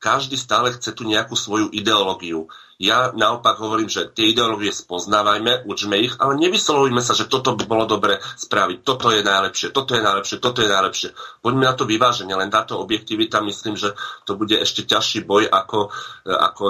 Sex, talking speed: male, 180 wpm